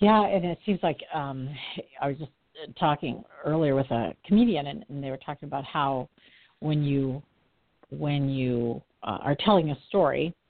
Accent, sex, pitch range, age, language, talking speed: American, female, 155-210 Hz, 50-69, English, 170 wpm